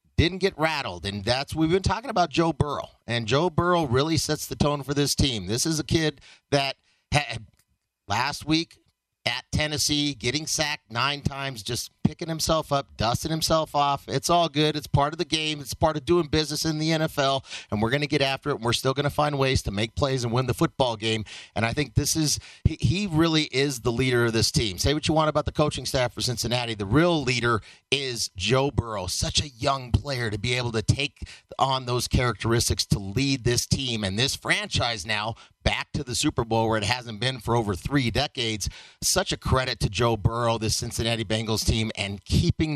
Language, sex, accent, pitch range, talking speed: English, male, American, 120-155 Hz, 215 wpm